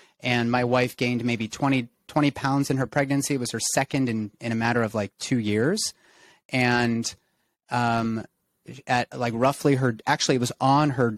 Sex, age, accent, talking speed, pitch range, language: male, 30-49, American, 185 wpm, 110-135 Hz, English